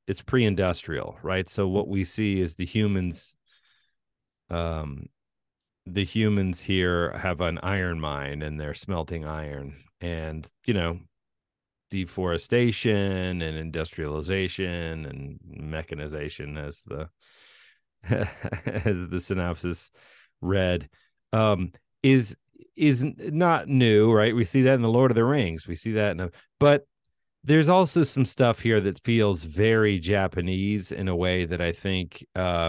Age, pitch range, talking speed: 30-49, 85-105 Hz, 130 wpm